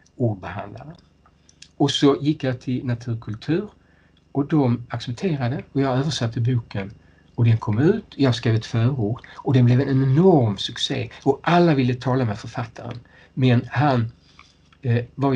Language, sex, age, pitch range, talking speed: Swedish, male, 60-79, 110-140 Hz, 150 wpm